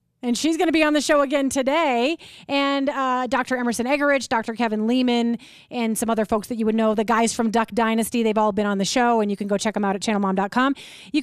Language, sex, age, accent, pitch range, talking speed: English, female, 30-49, American, 215-260 Hz, 250 wpm